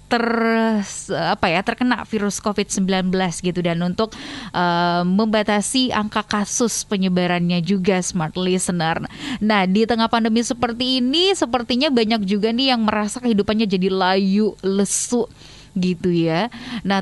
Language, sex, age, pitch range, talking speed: Indonesian, female, 20-39, 200-260 Hz, 125 wpm